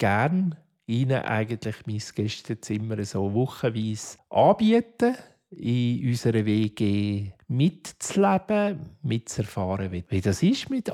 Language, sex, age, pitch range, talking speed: German, male, 50-69, 110-150 Hz, 95 wpm